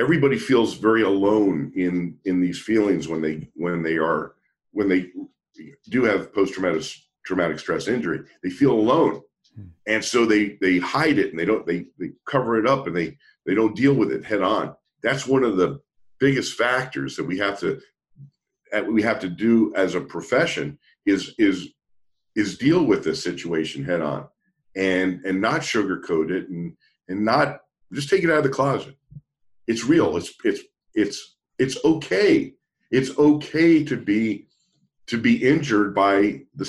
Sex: male